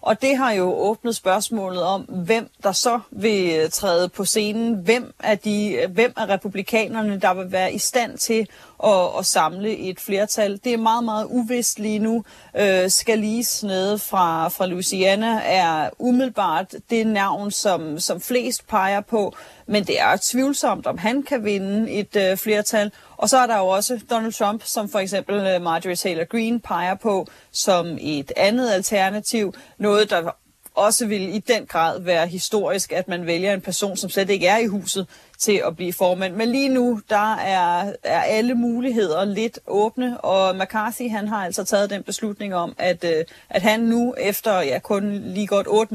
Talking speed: 180 wpm